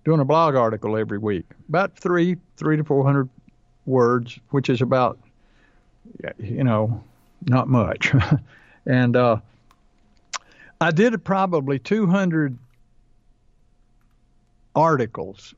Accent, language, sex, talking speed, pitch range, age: American, English, male, 105 wpm, 115-145 Hz, 60-79